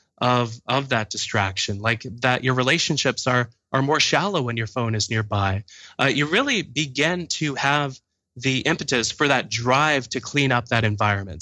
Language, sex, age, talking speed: English, male, 20-39, 175 wpm